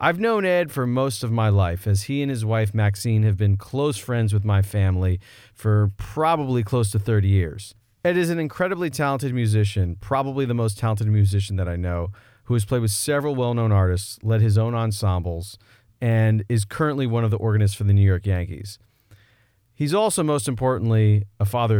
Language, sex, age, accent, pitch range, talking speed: English, male, 30-49, American, 100-115 Hz, 195 wpm